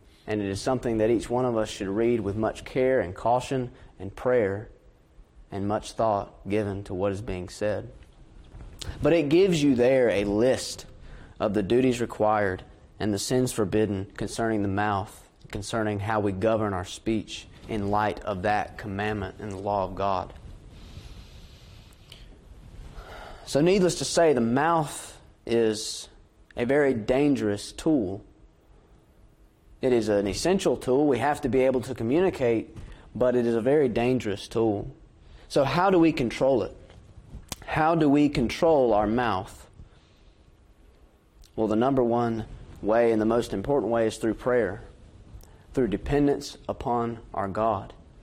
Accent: American